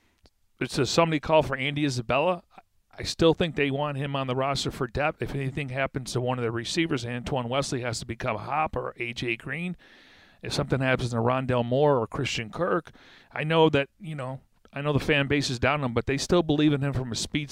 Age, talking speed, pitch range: 40-59, 235 wpm, 125-150 Hz